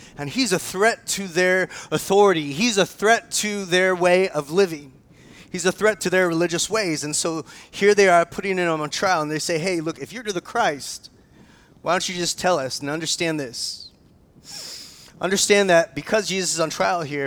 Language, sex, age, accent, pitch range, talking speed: English, male, 30-49, American, 155-210 Hz, 200 wpm